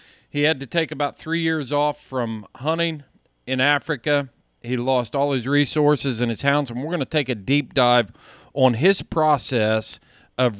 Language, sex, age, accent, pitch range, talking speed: English, male, 40-59, American, 120-145 Hz, 180 wpm